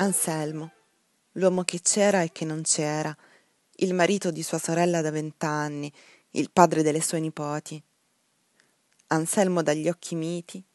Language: Italian